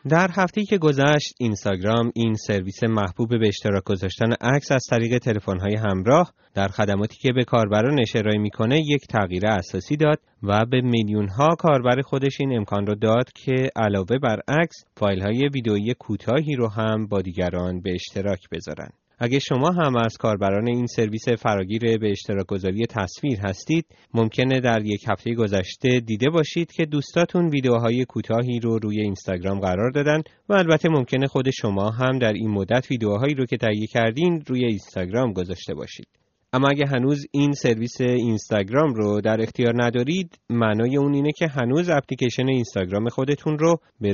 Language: Persian